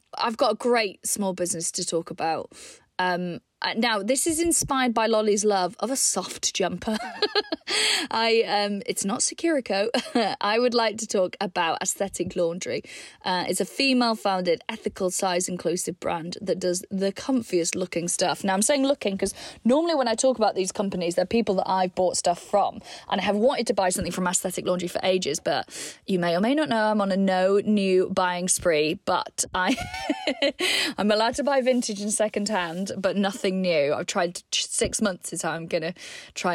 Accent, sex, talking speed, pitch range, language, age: British, female, 190 wpm, 185-235 Hz, English, 20-39